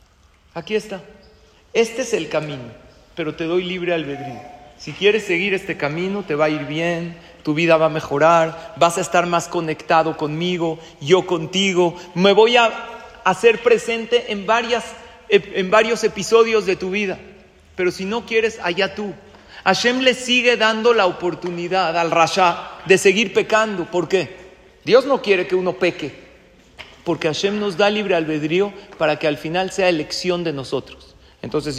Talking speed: 160 wpm